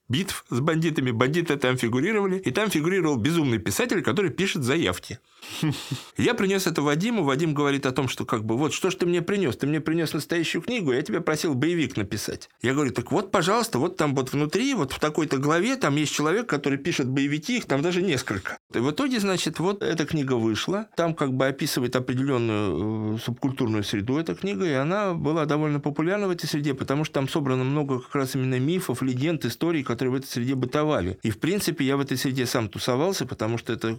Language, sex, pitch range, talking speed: Russian, male, 115-155 Hz, 210 wpm